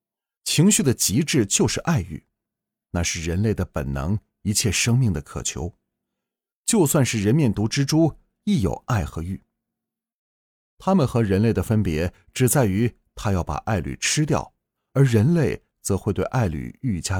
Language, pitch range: Chinese, 95-130 Hz